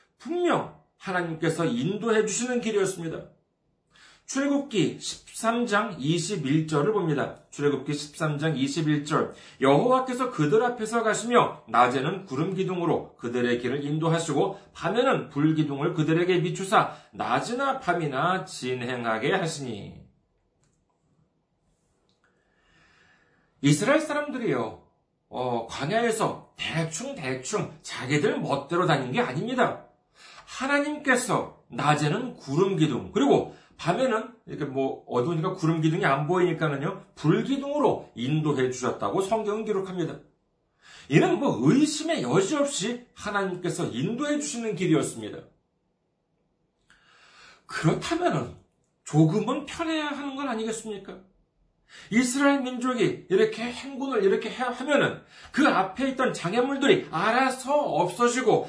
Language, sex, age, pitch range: Korean, male, 40-59, 160-255 Hz